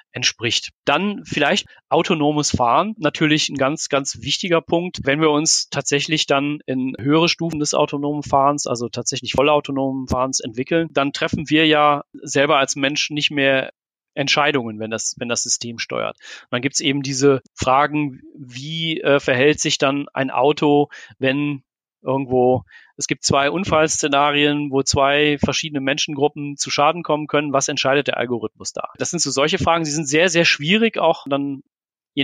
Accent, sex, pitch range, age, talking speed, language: German, male, 135-155 Hz, 40-59, 165 wpm, German